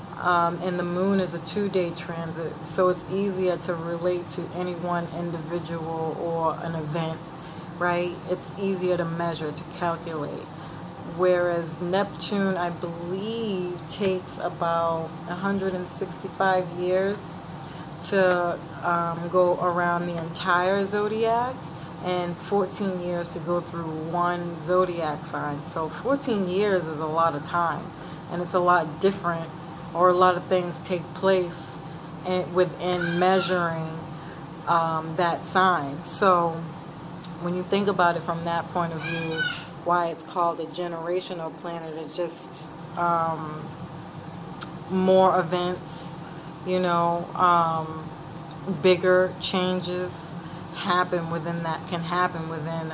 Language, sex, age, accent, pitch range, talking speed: English, female, 30-49, American, 160-180 Hz, 125 wpm